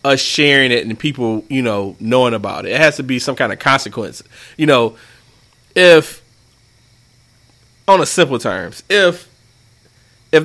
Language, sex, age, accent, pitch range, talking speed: English, male, 30-49, American, 125-190 Hz, 155 wpm